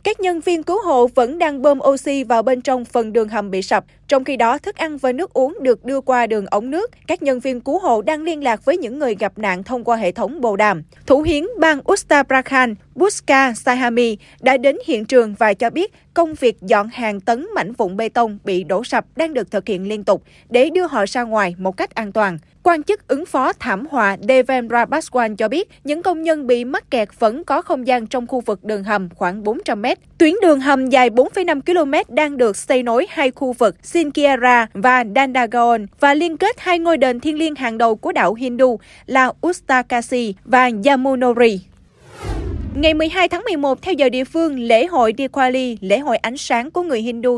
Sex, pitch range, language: female, 225-300 Hz, Vietnamese